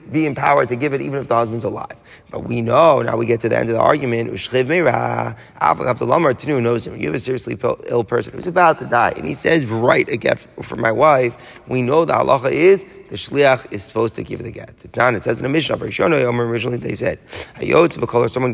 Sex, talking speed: male, 210 wpm